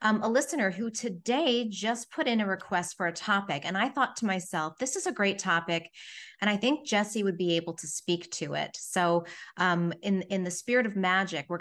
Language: English